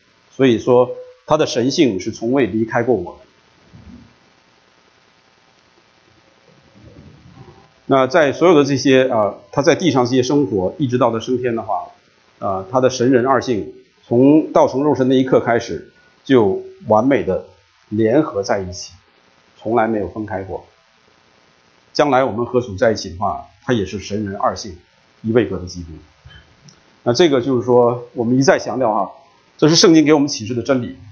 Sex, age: male, 50-69